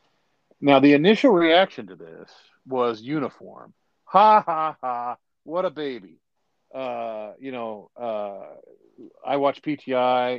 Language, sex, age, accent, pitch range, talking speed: English, male, 50-69, American, 115-140 Hz, 120 wpm